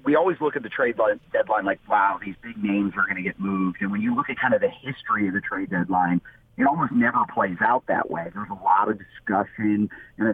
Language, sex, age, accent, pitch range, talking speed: English, male, 40-59, American, 105-125 Hz, 255 wpm